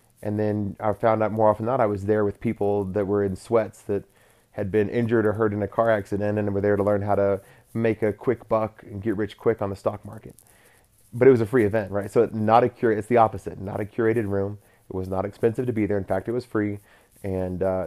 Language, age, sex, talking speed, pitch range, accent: English, 30-49, male, 255 wpm, 95-110 Hz, American